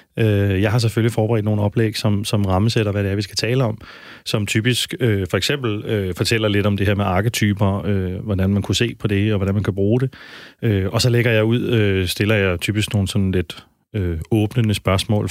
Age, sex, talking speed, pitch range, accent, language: 30-49, male, 225 wpm, 100-120 Hz, native, Danish